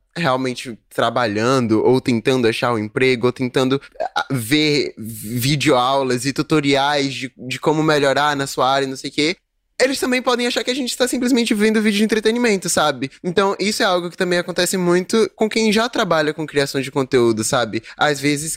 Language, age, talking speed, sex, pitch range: Portuguese, 10-29, 185 wpm, male, 135-205 Hz